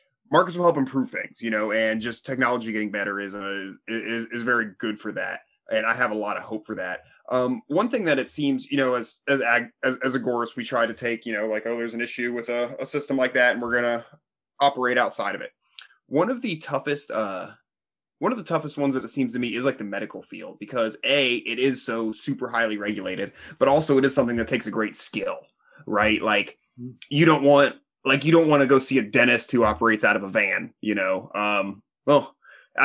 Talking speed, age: 230 wpm, 20-39